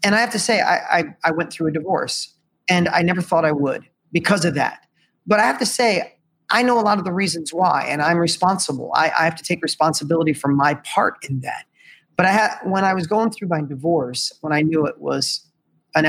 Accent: American